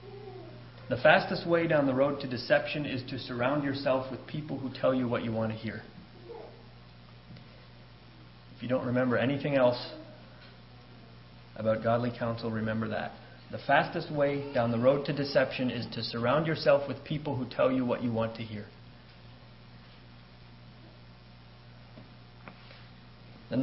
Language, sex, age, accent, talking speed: English, male, 40-59, American, 140 wpm